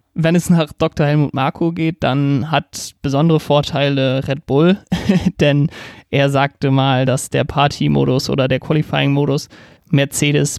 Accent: German